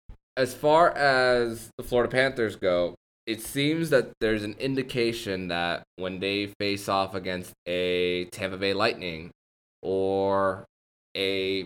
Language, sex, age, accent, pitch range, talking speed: English, male, 20-39, American, 90-110 Hz, 130 wpm